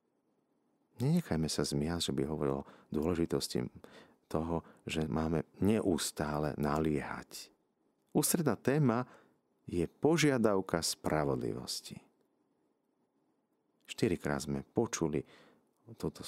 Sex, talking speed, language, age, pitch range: male, 75 wpm, Slovak, 50-69, 75-105 Hz